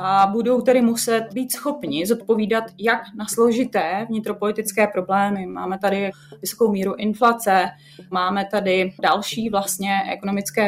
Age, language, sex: 20-39, Czech, female